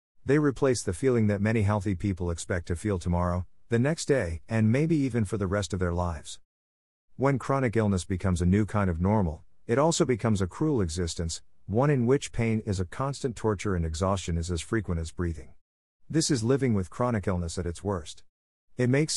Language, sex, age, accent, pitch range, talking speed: English, male, 50-69, American, 90-115 Hz, 205 wpm